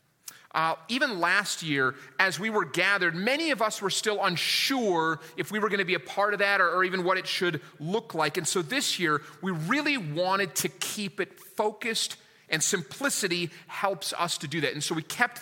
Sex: male